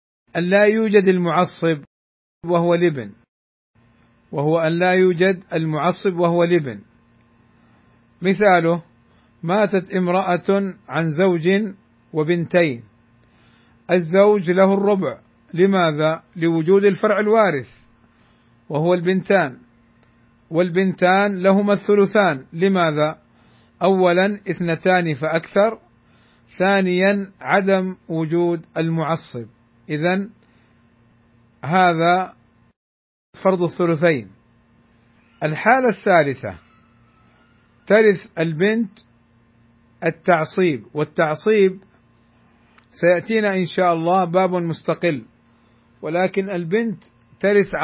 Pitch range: 115-185 Hz